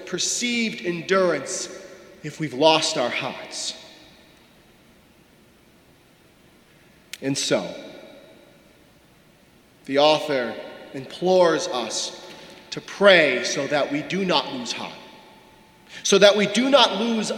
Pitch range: 180-225 Hz